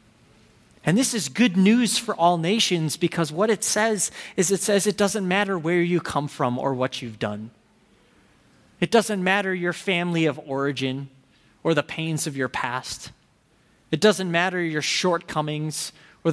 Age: 30-49